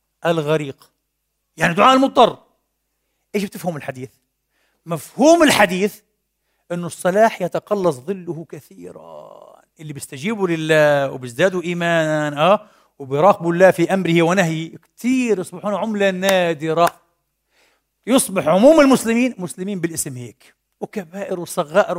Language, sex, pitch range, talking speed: Arabic, male, 150-200 Hz, 105 wpm